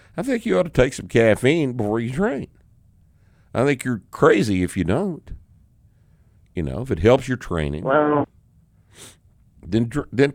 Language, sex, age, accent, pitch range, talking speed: English, male, 60-79, American, 85-115 Hz, 155 wpm